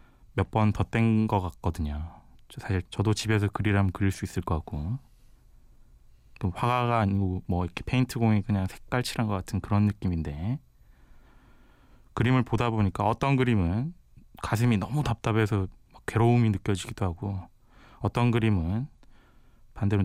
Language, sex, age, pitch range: Korean, male, 20-39, 95-115 Hz